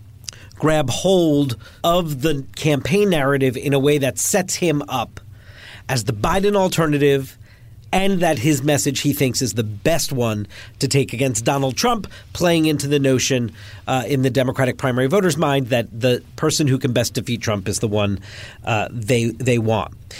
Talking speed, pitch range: 170 wpm, 115-160 Hz